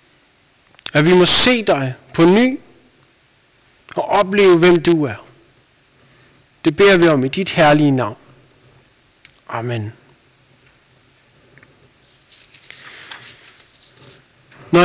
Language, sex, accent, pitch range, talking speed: Danish, male, native, 130-190 Hz, 90 wpm